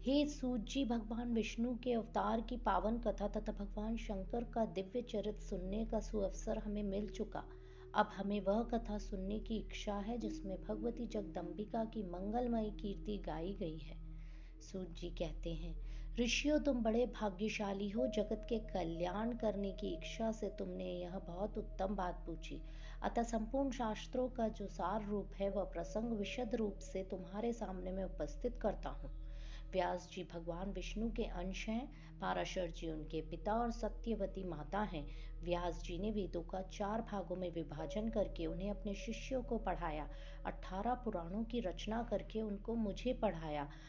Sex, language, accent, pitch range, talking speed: female, Hindi, native, 175-220 Hz, 160 wpm